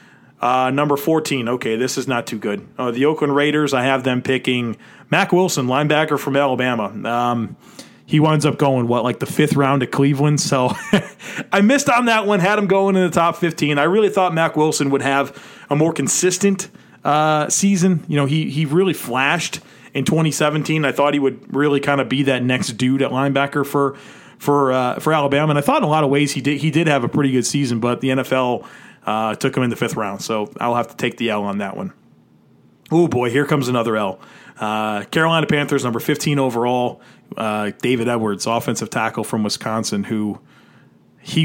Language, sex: English, male